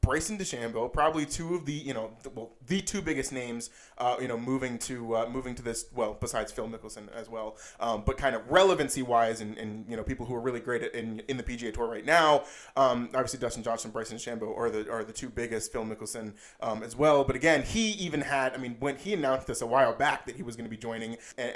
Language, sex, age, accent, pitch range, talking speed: English, male, 20-39, American, 115-140 Hz, 250 wpm